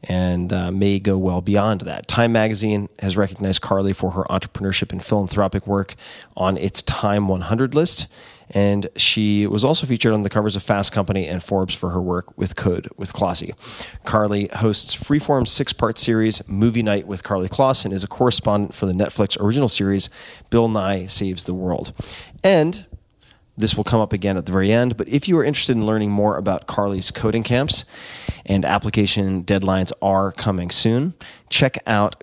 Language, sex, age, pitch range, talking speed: English, male, 30-49, 95-115 Hz, 180 wpm